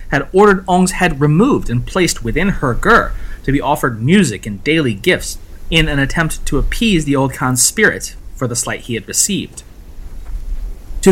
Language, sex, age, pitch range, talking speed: English, male, 30-49, 120-160 Hz, 180 wpm